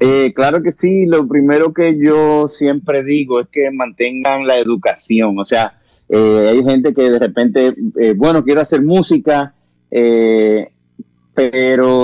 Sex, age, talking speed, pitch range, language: male, 30-49, 150 wpm, 105-130 Hz, English